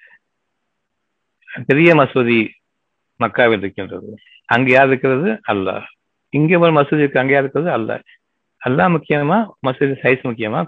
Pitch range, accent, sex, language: 115-150 Hz, native, male, Tamil